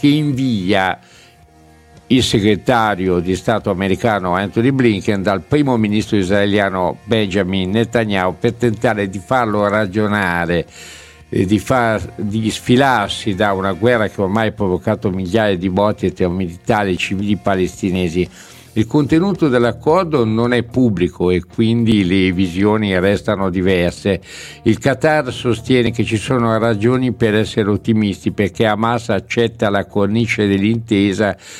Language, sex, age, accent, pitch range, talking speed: Italian, male, 60-79, native, 100-120 Hz, 125 wpm